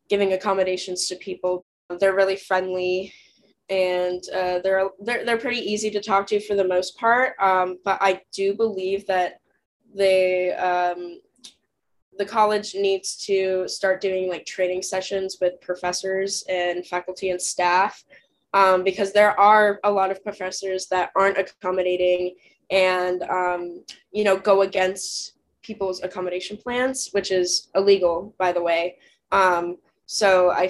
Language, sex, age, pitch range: English, female, 10-29, 180-200 Hz